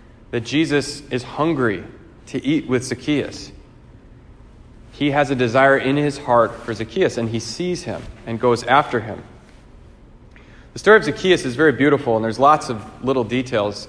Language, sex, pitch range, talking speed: English, male, 110-135 Hz, 165 wpm